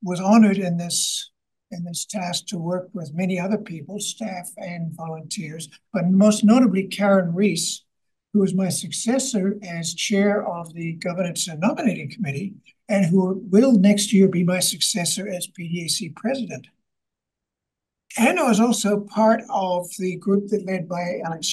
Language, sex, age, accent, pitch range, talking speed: English, male, 60-79, American, 175-210 Hz, 155 wpm